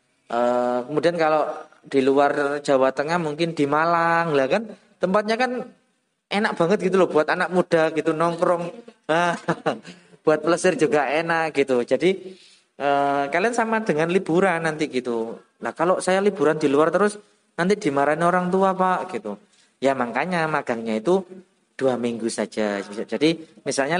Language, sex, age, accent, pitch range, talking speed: Indonesian, male, 20-39, native, 130-170 Hz, 145 wpm